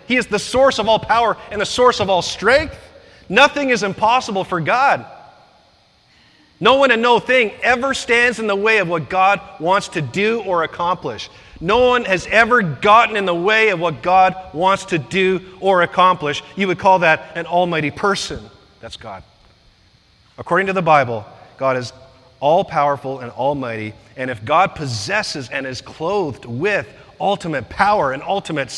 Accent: American